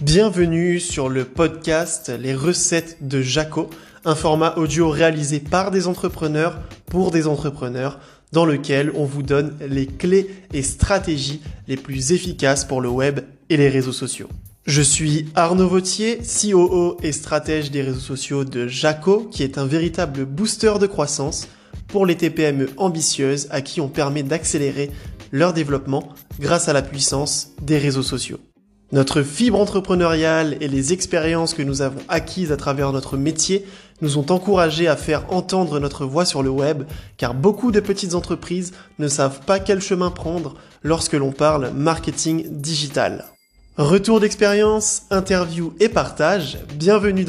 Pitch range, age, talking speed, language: 140-180 Hz, 20-39, 155 wpm, French